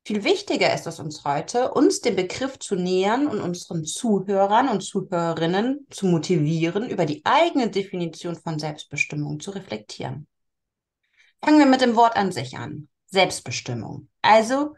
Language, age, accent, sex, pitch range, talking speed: German, 30-49, German, female, 165-230 Hz, 145 wpm